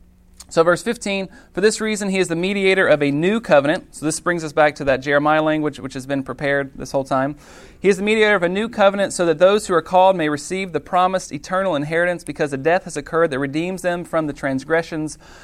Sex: male